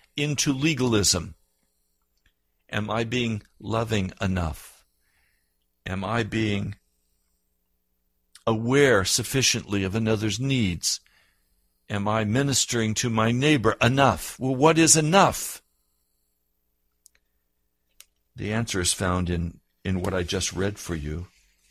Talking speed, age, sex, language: 105 wpm, 60-79, male, English